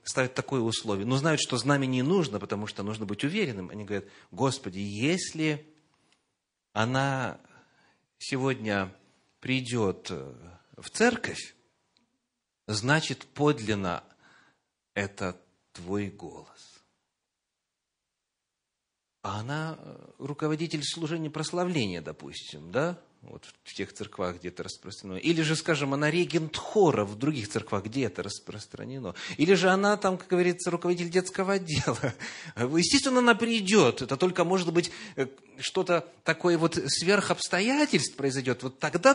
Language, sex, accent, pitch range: Russian, male, native, 105-170 Hz